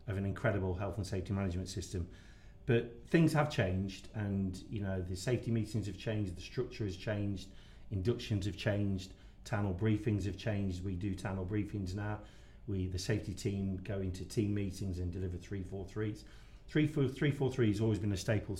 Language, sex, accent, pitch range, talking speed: English, male, British, 95-110 Hz, 190 wpm